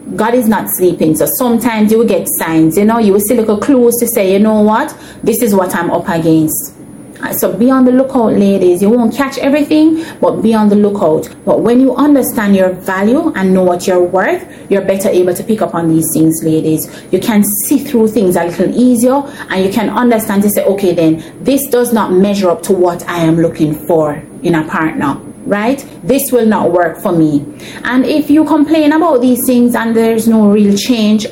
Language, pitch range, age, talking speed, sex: English, 195-255 Hz, 30-49, 215 wpm, female